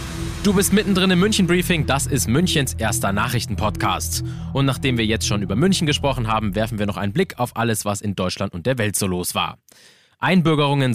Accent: German